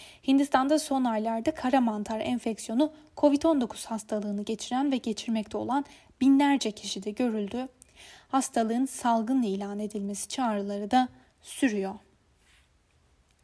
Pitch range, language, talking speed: 215-275 Hz, Turkish, 100 wpm